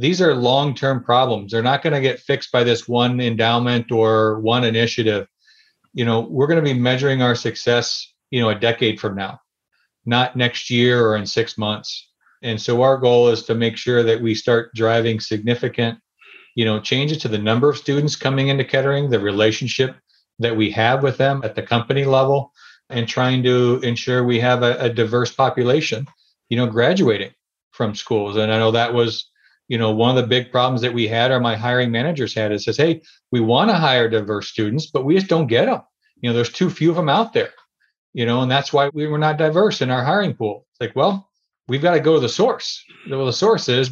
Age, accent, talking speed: 40-59, American, 215 wpm